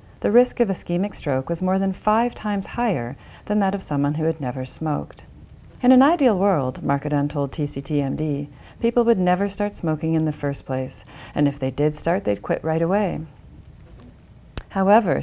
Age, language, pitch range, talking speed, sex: 40-59, English, 140-200 Hz, 175 wpm, female